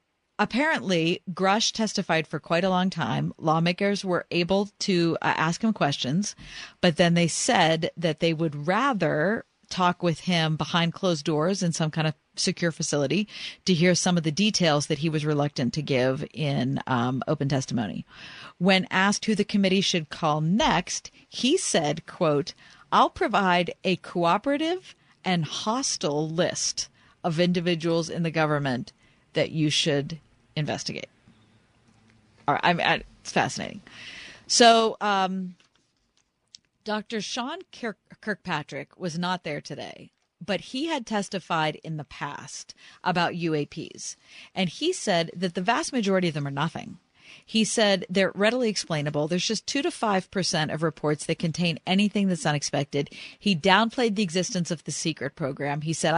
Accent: American